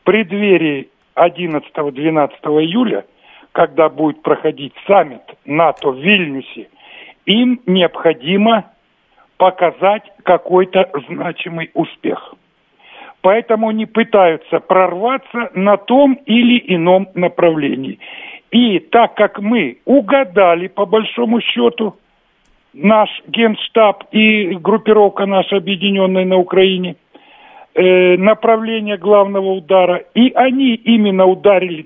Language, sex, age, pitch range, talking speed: Russian, male, 50-69, 180-230 Hz, 90 wpm